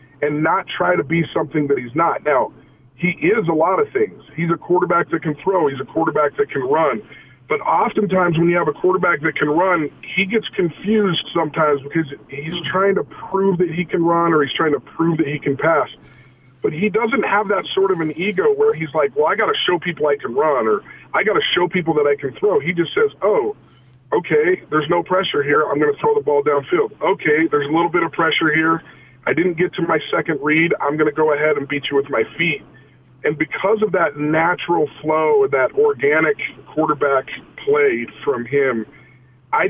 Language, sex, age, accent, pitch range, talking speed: English, male, 40-59, American, 145-235 Hz, 220 wpm